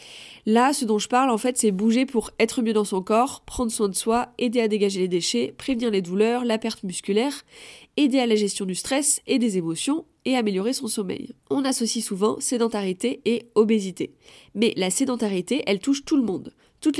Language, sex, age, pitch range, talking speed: French, female, 20-39, 210-260 Hz, 205 wpm